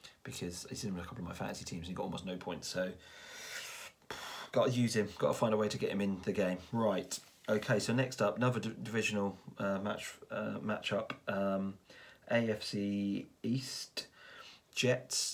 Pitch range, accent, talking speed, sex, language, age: 95-115 Hz, British, 185 wpm, male, English, 30-49